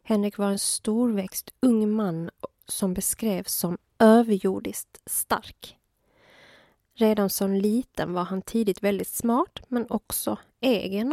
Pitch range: 190-230 Hz